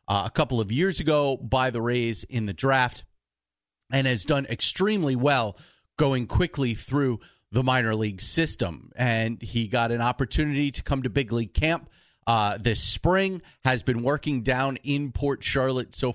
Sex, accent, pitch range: male, American, 110-145 Hz